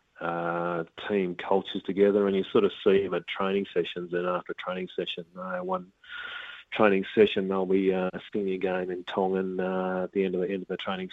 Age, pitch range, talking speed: 30-49, 90-100 Hz, 205 wpm